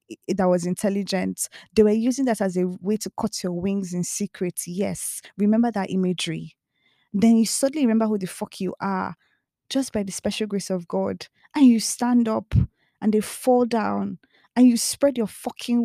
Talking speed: 185 wpm